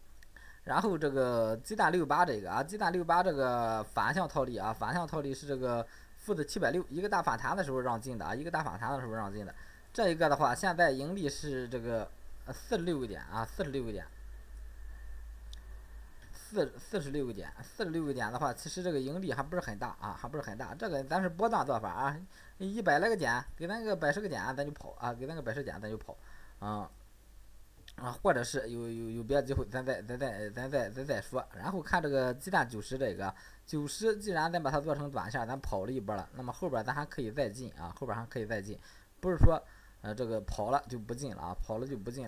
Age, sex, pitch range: 20-39, male, 110-160 Hz